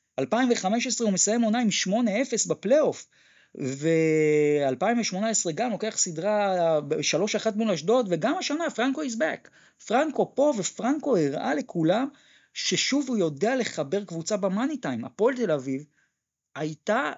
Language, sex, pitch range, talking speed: Hebrew, male, 155-230 Hz, 120 wpm